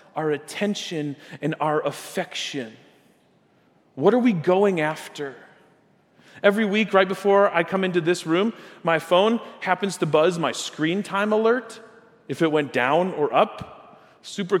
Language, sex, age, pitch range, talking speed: English, male, 40-59, 145-185 Hz, 145 wpm